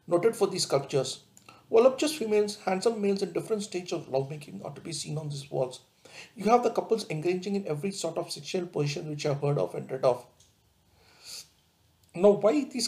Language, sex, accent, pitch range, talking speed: English, male, Indian, 145-195 Hz, 190 wpm